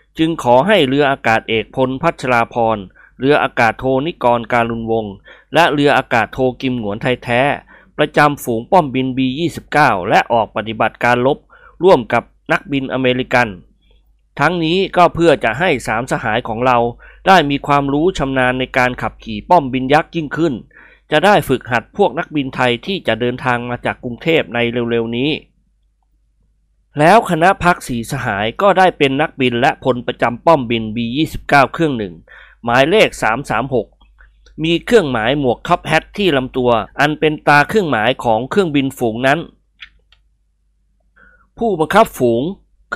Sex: male